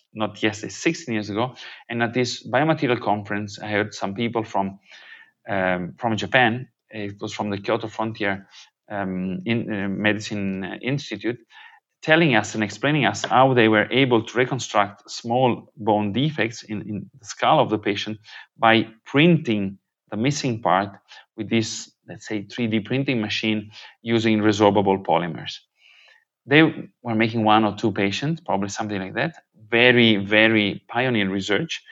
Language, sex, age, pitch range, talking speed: English, male, 30-49, 105-125 Hz, 145 wpm